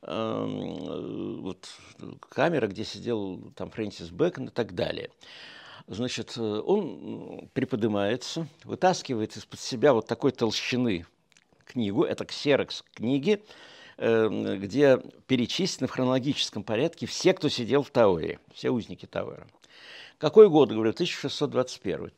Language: Russian